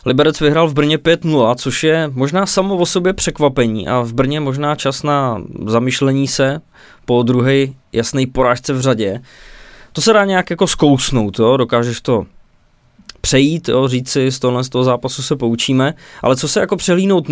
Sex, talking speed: male, 175 wpm